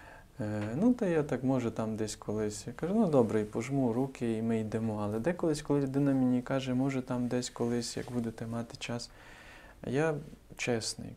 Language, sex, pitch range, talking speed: Ukrainian, male, 110-135 Hz, 185 wpm